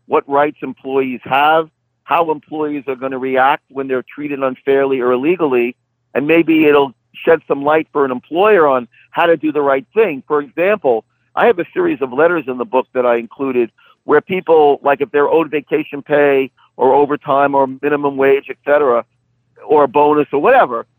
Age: 50-69